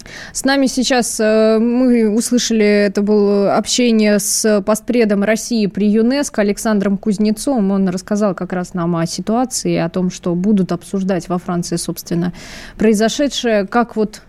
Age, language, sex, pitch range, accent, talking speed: 20-39, Russian, female, 195-230 Hz, native, 140 wpm